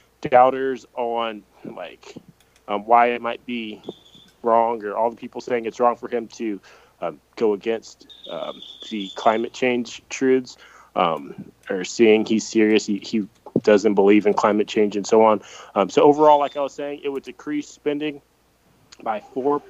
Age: 20-39